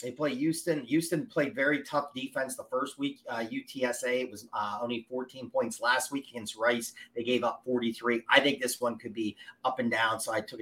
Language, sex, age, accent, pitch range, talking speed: English, male, 30-49, American, 125-165 Hz, 220 wpm